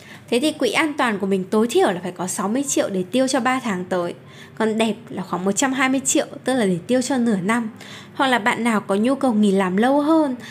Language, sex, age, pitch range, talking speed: Vietnamese, female, 10-29, 200-265 Hz, 250 wpm